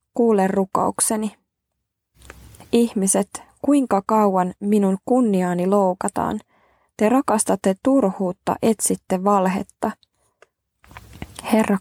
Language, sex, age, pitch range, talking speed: Finnish, female, 20-39, 185-220 Hz, 70 wpm